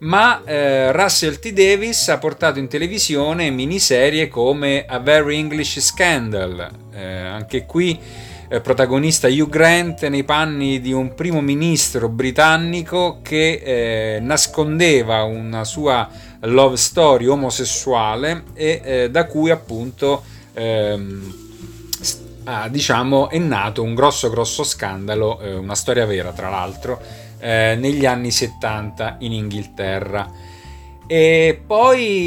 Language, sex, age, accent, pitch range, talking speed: Italian, male, 30-49, native, 110-155 Hz, 120 wpm